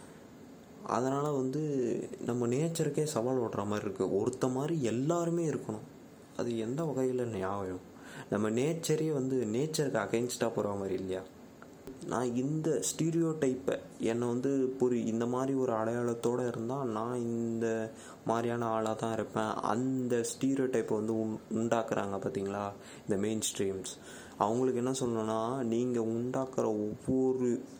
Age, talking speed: 20-39, 115 wpm